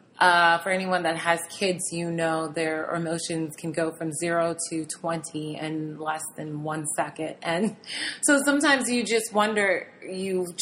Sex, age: female, 30-49